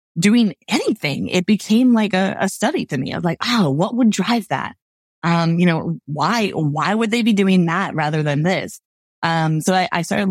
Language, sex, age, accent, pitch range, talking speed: English, female, 20-39, American, 155-195 Hz, 210 wpm